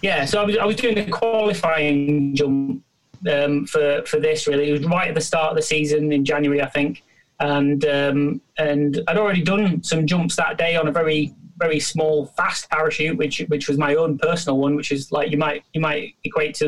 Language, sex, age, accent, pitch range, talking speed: English, male, 30-49, British, 145-160 Hz, 220 wpm